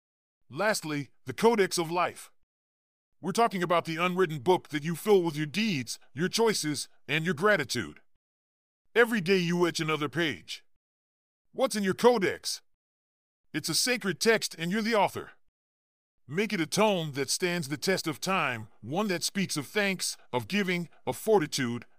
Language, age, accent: English, 40-59, American